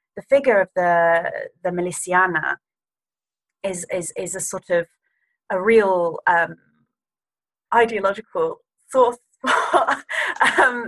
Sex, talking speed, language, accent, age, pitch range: female, 105 wpm, English, British, 30-49, 175-205 Hz